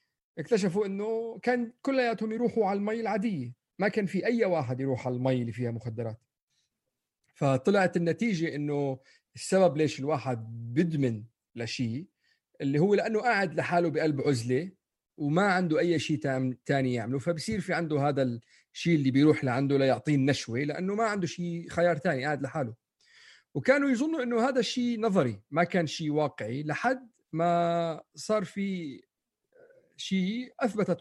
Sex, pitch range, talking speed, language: male, 135-200 Hz, 145 wpm, Arabic